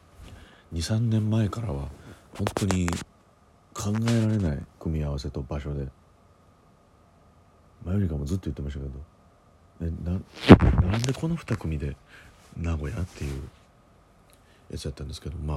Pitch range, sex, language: 75-95 Hz, male, Japanese